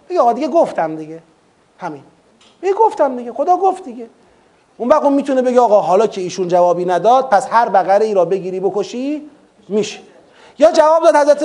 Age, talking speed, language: 30-49, 175 wpm, Persian